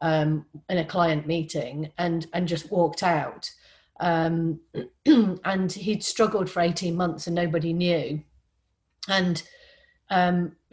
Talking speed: 125 wpm